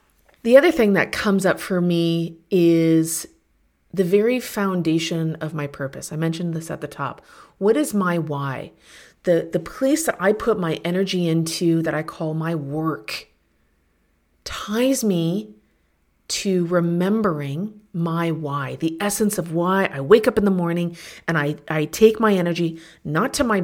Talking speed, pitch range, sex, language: 160 wpm, 155-195 Hz, female, English